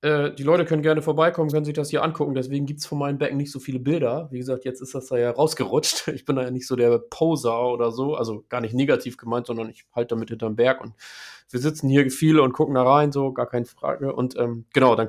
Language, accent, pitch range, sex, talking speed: German, German, 125-155 Hz, male, 265 wpm